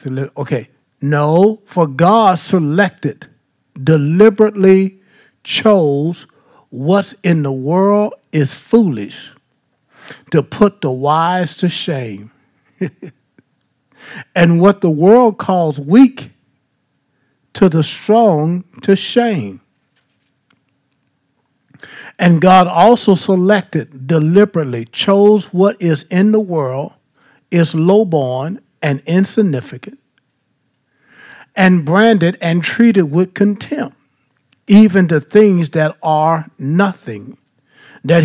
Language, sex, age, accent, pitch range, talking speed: English, male, 60-79, American, 140-195 Hz, 90 wpm